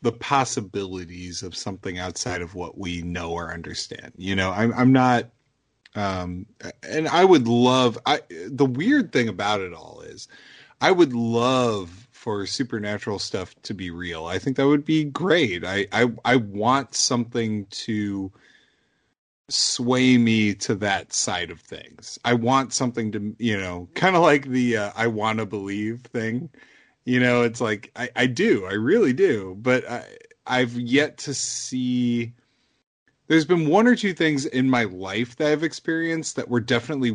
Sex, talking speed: male, 165 wpm